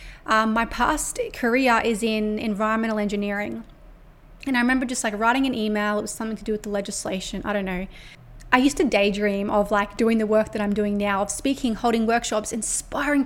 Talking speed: 205 wpm